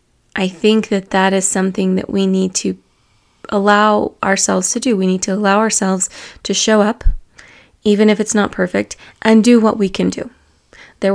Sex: female